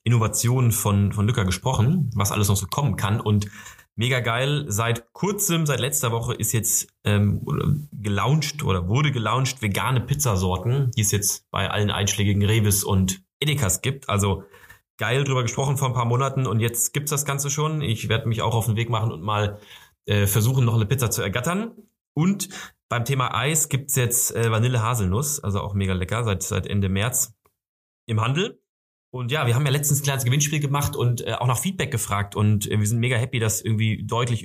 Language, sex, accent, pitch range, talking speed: German, male, German, 105-135 Hz, 200 wpm